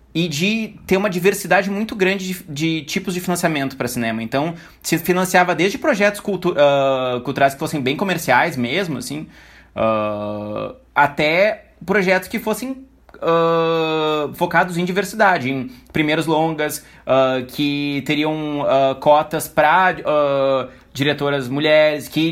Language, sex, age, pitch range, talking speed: Portuguese, male, 20-39, 135-175 Hz, 135 wpm